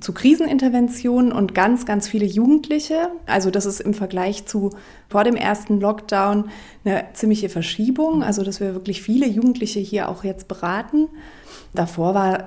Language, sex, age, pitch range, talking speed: German, female, 30-49, 185-220 Hz, 150 wpm